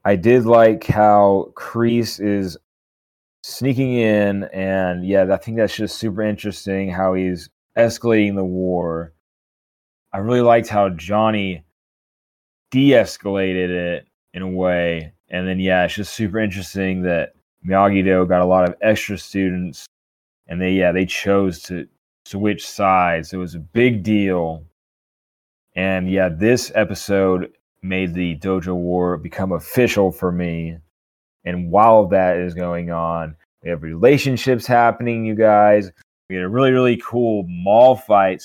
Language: English